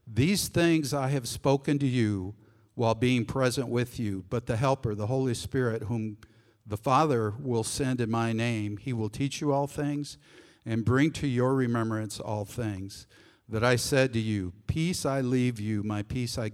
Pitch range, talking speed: 105-125 Hz, 185 wpm